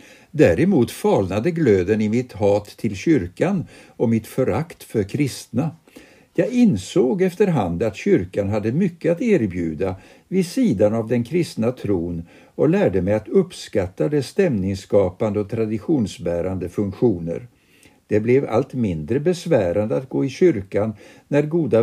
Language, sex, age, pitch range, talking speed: Swedish, male, 60-79, 105-160 Hz, 135 wpm